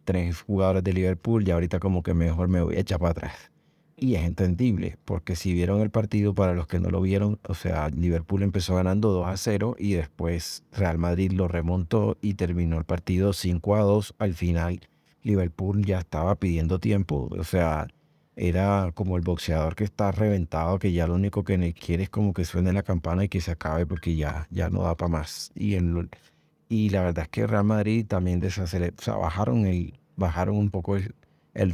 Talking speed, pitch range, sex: 210 wpm, 85-100 Hz, male